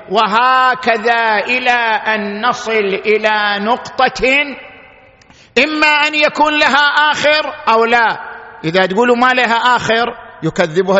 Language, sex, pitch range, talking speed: Arabic, male, 195-255 Hz, 110 wpm